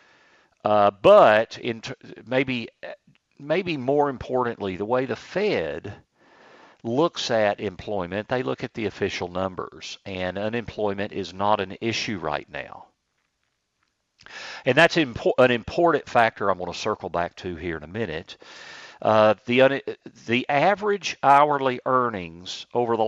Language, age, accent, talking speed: English, 50-69, American, 140 wpm